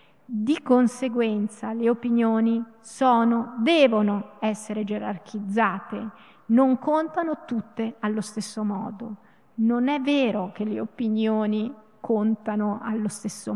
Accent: native